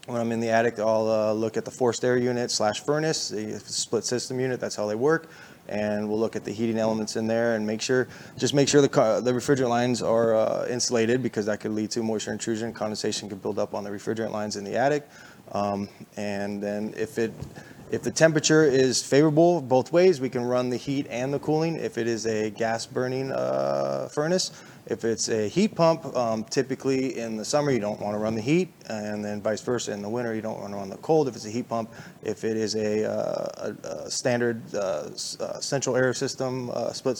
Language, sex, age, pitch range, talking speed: English, male, 20-39, 110-130 Hz, 230 wpm